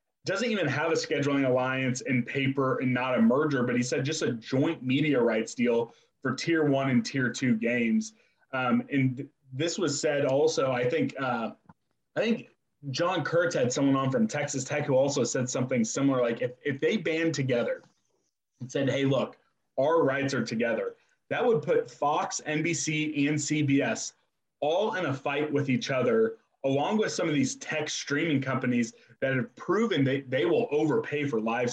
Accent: American